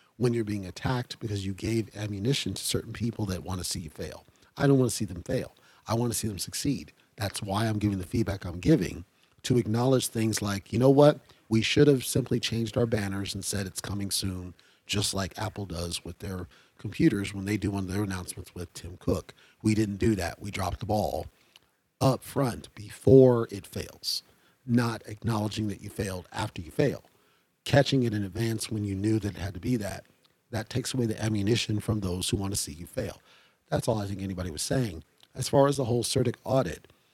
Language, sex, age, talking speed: English, male, 40-59, 220 wpm